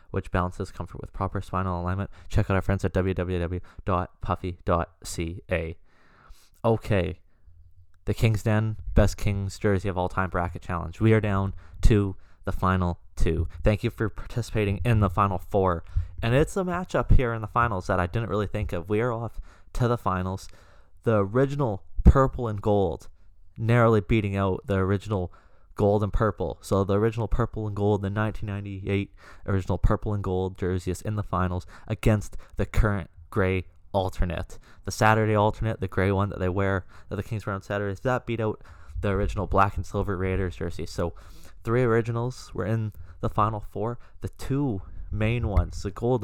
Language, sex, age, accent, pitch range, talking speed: English, male, 20-39, American, 90-110 Hz, 175 wpm